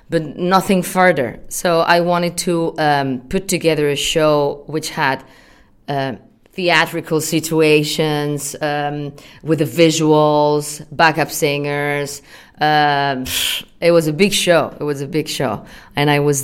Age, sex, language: 30-49, female, English